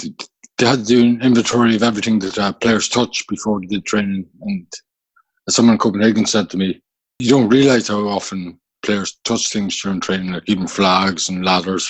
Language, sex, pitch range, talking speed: English, male, 95-120 Hz, 195 wpm